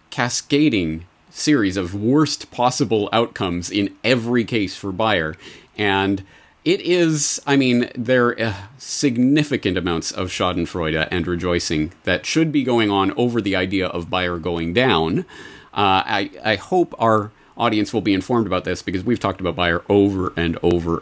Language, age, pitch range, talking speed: English, 30-49, 85-115 Hz, 155 wpm